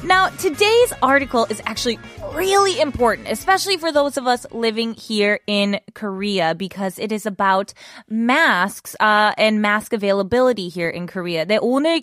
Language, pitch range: Korean, 200-265 Hz